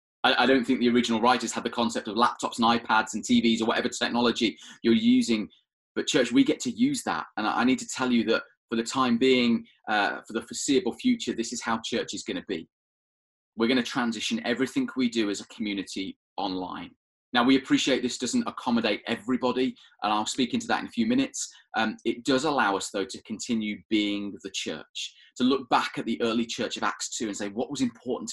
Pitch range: 110-130 Hz